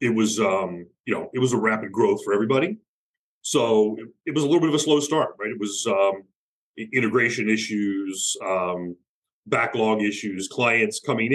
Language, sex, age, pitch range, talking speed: English, male, 30-49, 100-120 Hz, 180 wpm